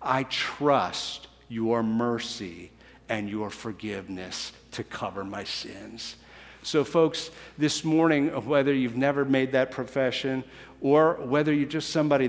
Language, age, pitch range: English, 50-69, 115-180 Hz